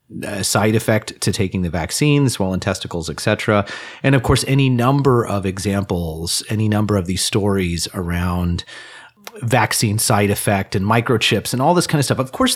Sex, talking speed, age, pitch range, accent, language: male, 165 wpm, 30-49, 95-115 Hz, American, English